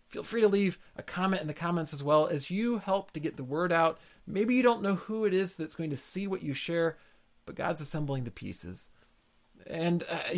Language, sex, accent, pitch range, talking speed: English, male, American, 130-185 Hz, 230 wpm